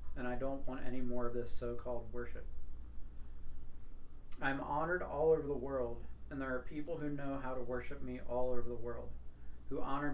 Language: English